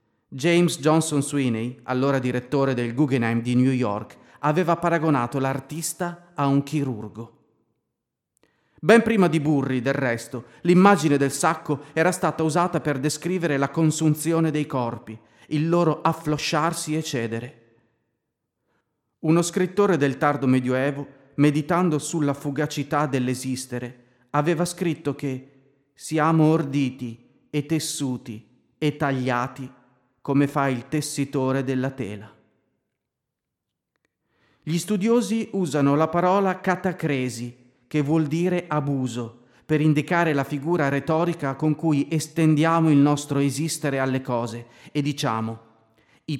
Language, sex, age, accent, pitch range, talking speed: Italian, male, 40-59, native, 125-160 Hz, 115 wpm